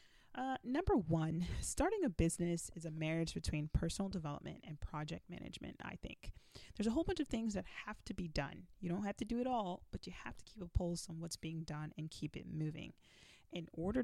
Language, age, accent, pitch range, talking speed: English, 30-49, American, 160-205 Hz, 220 wpm